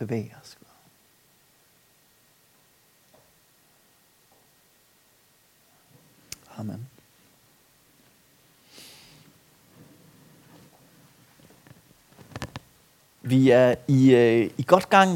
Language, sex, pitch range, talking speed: Danish, male, 120-170 Hz, 40 wpm